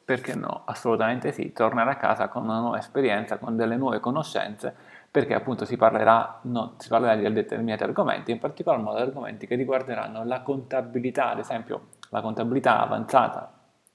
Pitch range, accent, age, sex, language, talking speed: 115-135 Hz, native, 30-49, male, Italian, 165 wpm